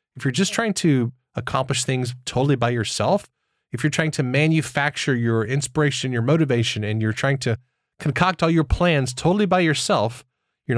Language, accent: English, American